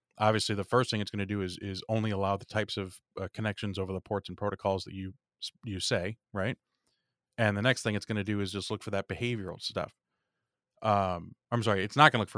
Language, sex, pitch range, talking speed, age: English, male, 100-115 Hz, 240 wpm, 30-49